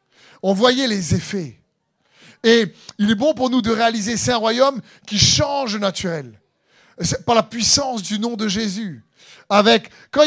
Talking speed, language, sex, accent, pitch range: 165 wpm, French, male, French, 175-230 Hz